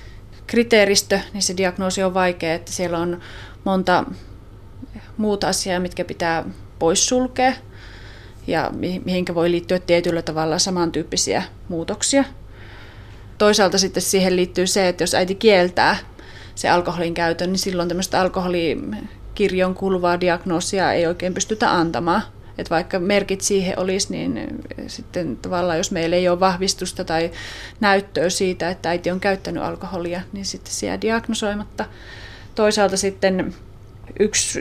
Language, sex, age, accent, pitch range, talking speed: Finnish, female, 30-49, native, 165-190 Hz, 125 wpm